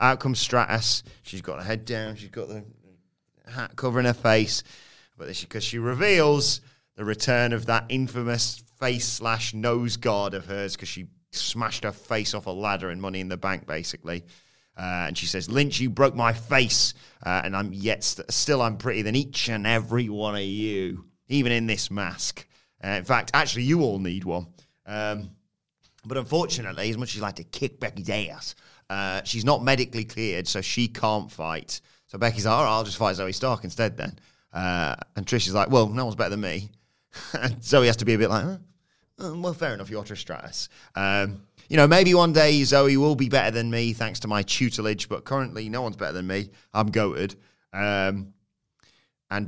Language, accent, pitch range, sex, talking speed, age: English, British, 100-125 Hz, male, 200 wpm, 30-49